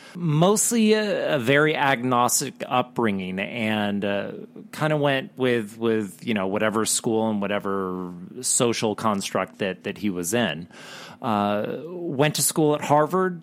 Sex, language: male, English